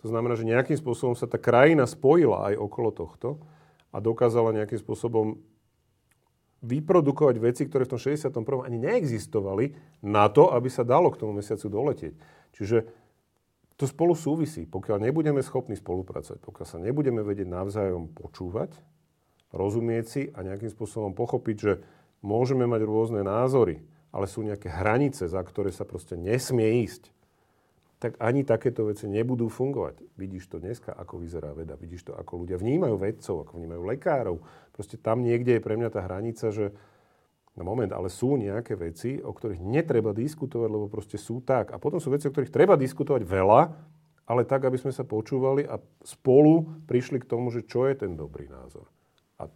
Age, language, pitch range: 40-59, Slovak, 100-130 Hz